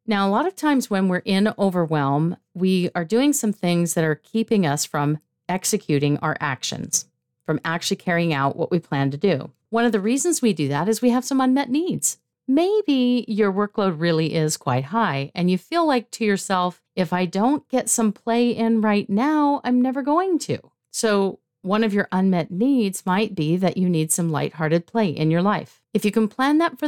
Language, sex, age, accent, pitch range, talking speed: English, female, 40-59, American, 170-230 Hz, 210 wpm